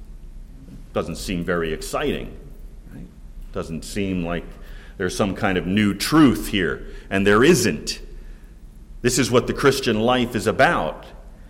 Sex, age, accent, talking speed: male, 40-59, American, 130 wpm